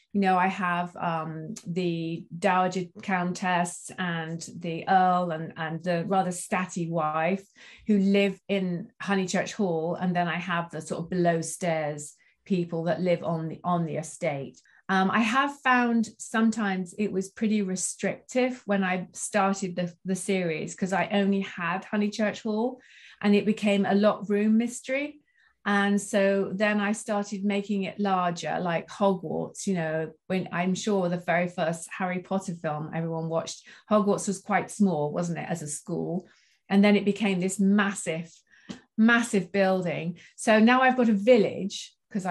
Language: English